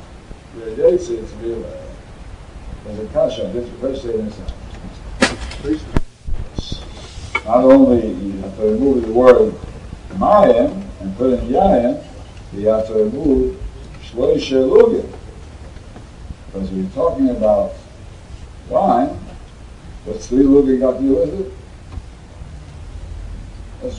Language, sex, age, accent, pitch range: English, male, 60-79, American, 85-130 Hz